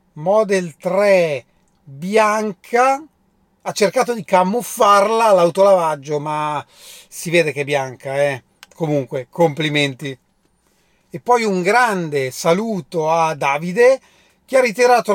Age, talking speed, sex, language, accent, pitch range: 40-59, 105 wpm, male, Italian, native, 155-195 Hz